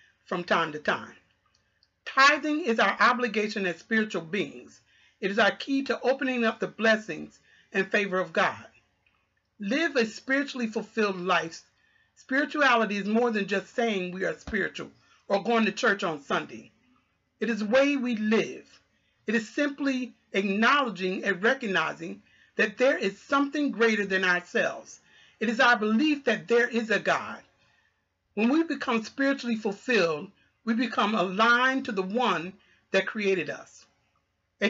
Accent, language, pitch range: American, English, 200-255 Hz